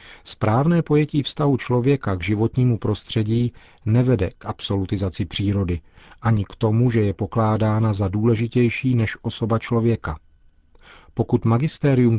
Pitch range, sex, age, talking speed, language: 100-125 Hz, male, 40-59, 120 wpm, Czech